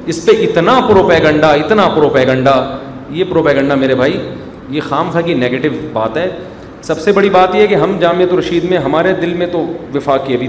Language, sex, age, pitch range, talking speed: Urdu, male, 40-59, 140-180 Hz, 195 wpm